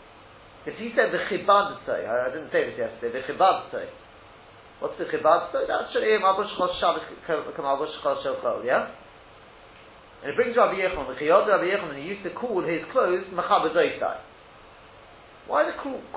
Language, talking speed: English, 180 wpm